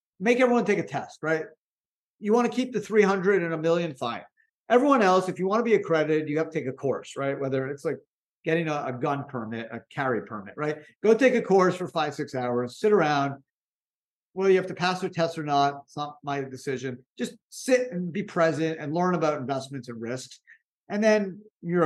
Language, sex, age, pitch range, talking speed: English, male, 50-69, 140-200 Hz, 220 wpm